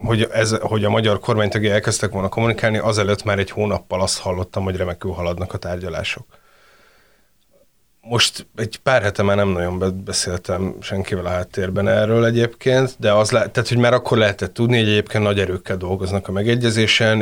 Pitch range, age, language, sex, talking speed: 100-115 Hz, 30-49, Hungarian, male, 170 wpm